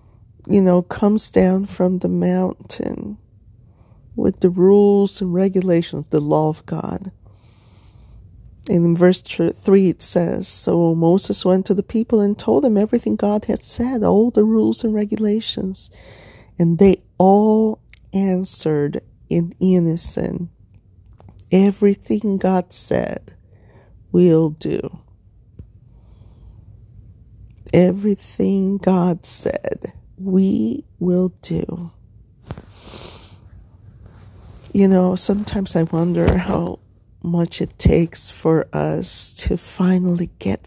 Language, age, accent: English, 40-59, American